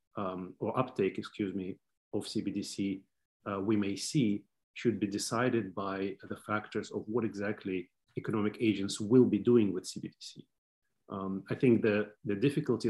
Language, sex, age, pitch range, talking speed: English, male, 30-49, 100-115 Hz, 155 wpm